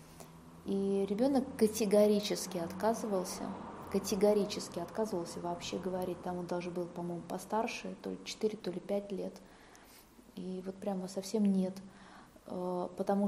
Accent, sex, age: native, female, 20-39